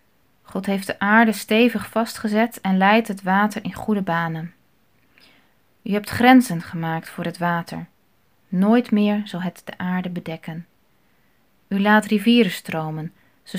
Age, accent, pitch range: 20-39, Dutch, 185-215 Hz